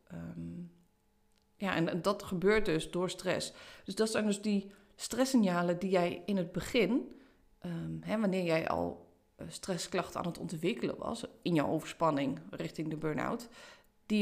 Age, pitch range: 30-49, 155-195 Hz